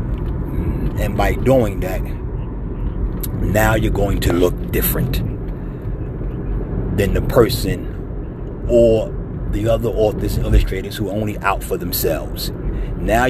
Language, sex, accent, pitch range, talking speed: English, male, American, 100-120 Hz, 115 wpm